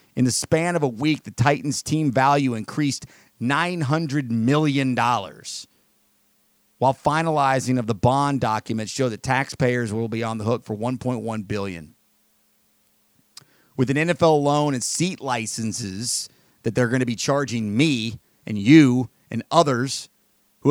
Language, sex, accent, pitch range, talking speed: English, male, American, 110-150 Hz, 140 wpm